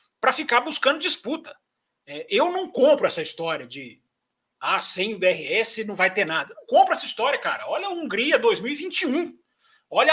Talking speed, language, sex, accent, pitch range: 165 wpm, Portuguese, male, Brazilian, 220-320 Hz